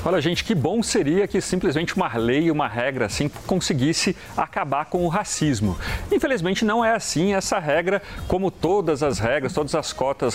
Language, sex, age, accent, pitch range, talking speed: Portuguese, male, 40-59, Brazilian, 150-210 Hz, 175 wpm